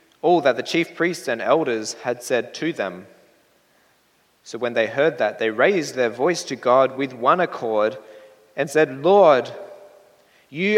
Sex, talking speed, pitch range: male, 160 wpm, 130-160 Hz